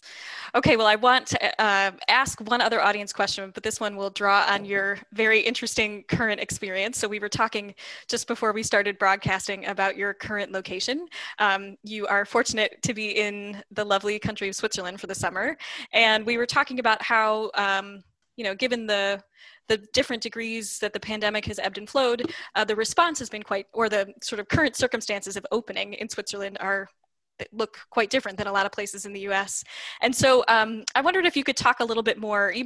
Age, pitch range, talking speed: 10-29, 200-230 Hz, 210 wpm